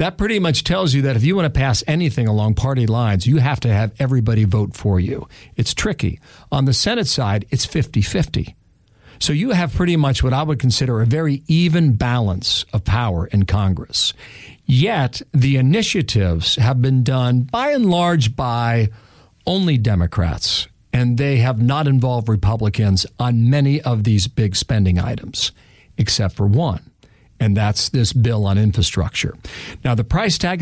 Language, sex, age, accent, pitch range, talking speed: English, male, 50-69, American, 110-155 Hz, 170 wpm